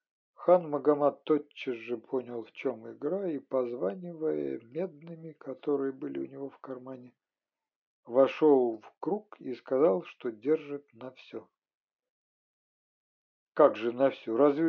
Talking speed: 125 wpm